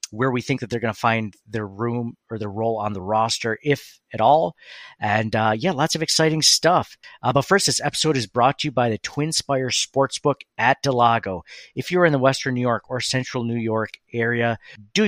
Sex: male